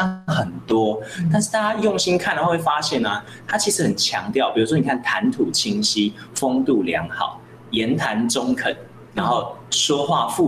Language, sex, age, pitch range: Chinese, male, 20-39, 115-190 Hz